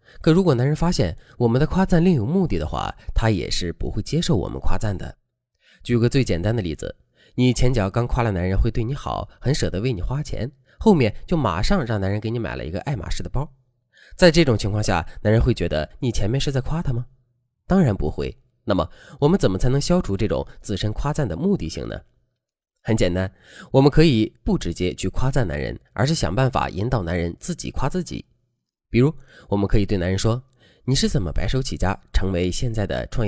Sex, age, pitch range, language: male, 20-39, 100-140 Hz, Chinese